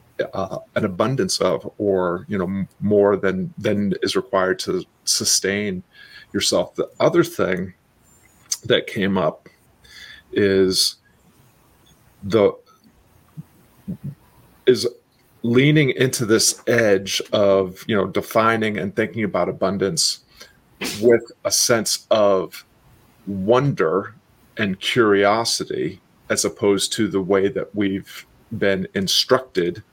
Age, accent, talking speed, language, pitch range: 40-59, American, 105 wpm, English, 95-115 Hz